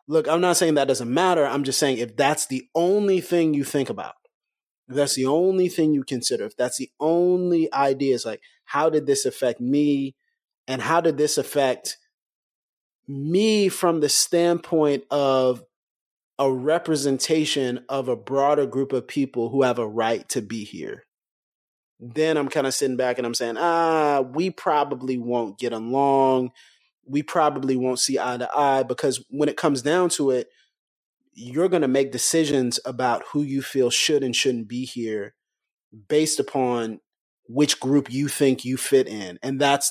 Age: 30-49